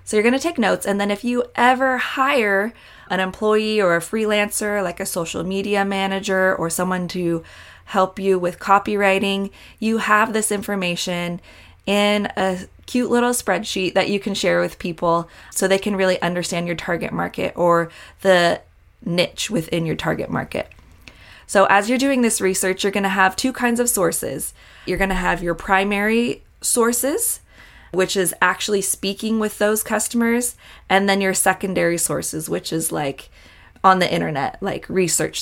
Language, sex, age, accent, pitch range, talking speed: English, female, 20-39, American, 180-215 Hz, 165 wpm